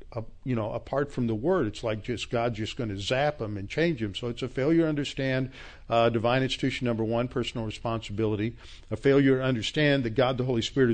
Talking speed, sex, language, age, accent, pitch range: 220 wpm, male, English, 50-69, American, 120-150 Hz